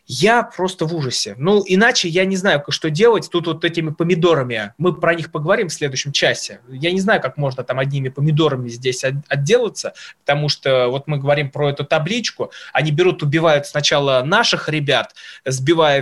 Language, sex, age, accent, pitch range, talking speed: Russian, male, 20-39, native, 145-185 Hz, 175 wpm